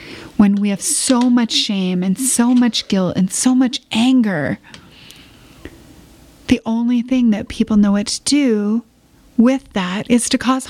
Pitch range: 205-240 Hz